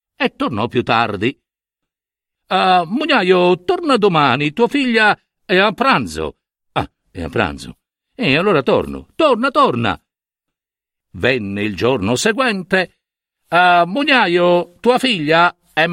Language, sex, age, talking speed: Italian, male, 60-79, 110 wpm